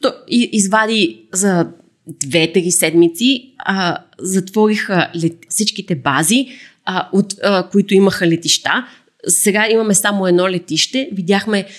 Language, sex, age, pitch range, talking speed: Bulgarian, female, 20-39, 175-210 Hz, 110 wpm